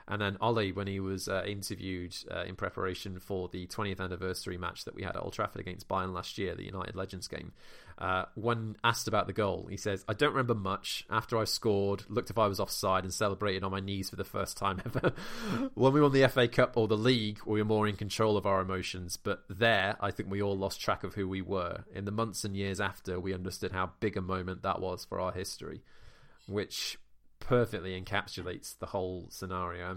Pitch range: 95-105 Hz